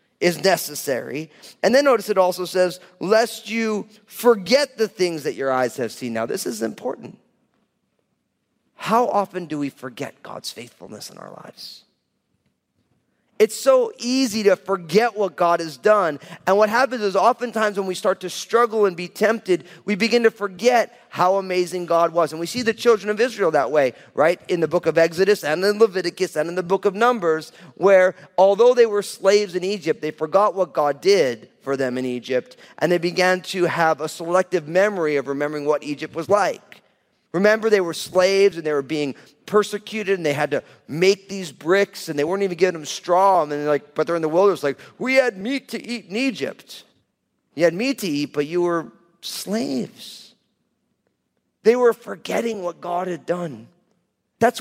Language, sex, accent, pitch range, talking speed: English, male, American, 160-215 Hz, 190 wpm